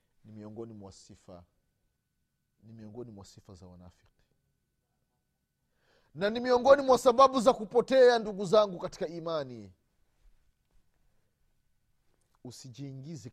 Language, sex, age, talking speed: Swahili, male, 40-59, 90 wpm